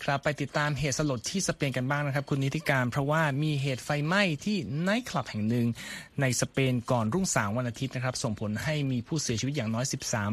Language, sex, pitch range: Thai, male, 120-155 Hz